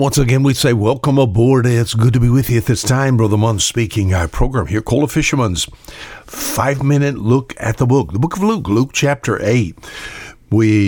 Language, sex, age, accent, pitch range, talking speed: English, male, 60-79, American, 105-130 Hz, 200 wpm